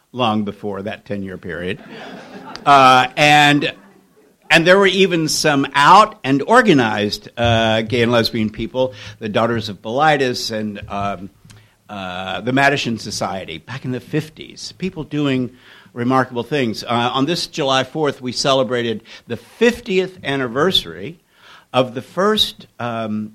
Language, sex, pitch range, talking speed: English, male, 110-150 Hz, 135 wpm